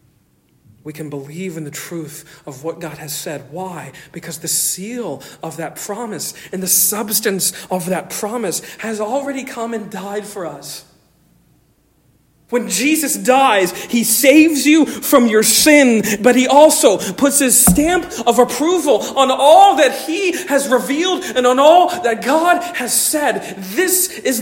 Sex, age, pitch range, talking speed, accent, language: male, 40-59, 230-315 Hz, 155 wpm, American, English